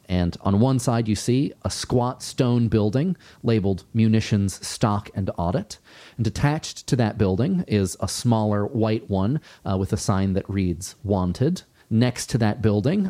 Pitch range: 105-125 Hz